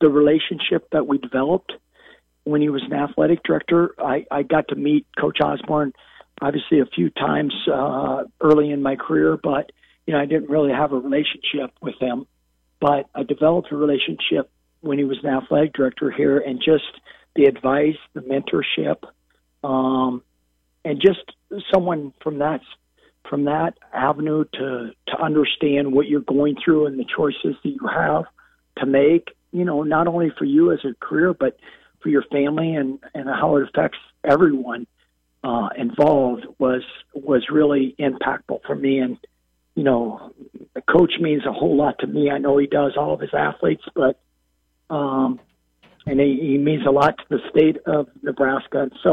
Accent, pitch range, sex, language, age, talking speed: American, 130-150 Hz, male, English, 50-69, 170 wpm